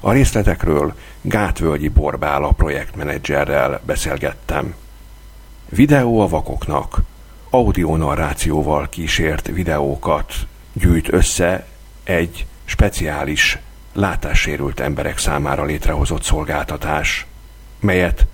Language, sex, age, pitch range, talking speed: Hungarian, male, 50-69, 75-95 Hz, 70 wpm